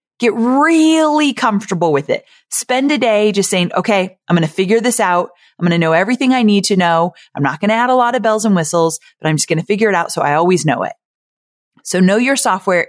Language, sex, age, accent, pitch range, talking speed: English, female, 30-49, American, 170-240 Hz, 250 wpm